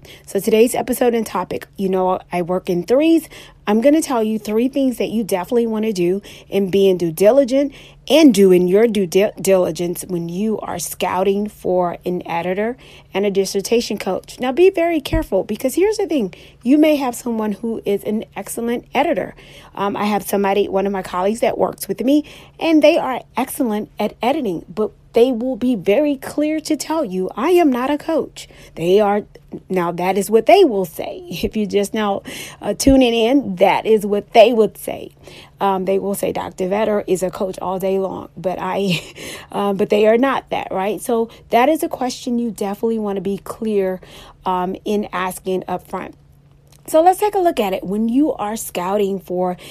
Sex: female